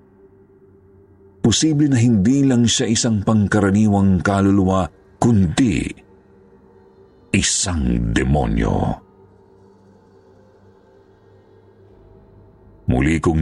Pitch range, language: 85-95 Hz, Filipino